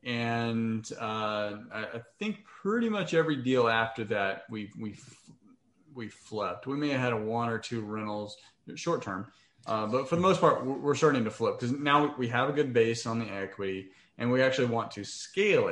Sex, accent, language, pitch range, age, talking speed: male, American, English, 105-125 Hz, 30-49, 190 wpm